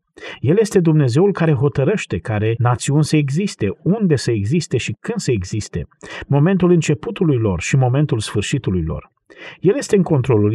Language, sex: Romanian, male